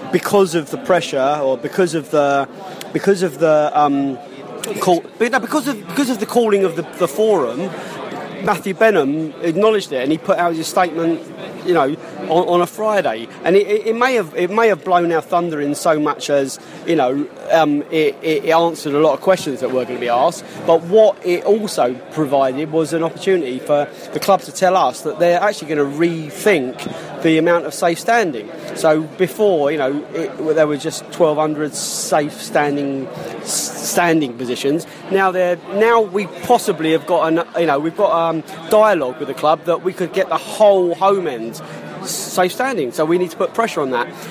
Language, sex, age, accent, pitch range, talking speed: English, male, 30-49, British, 150-195 Hz, 200 wpm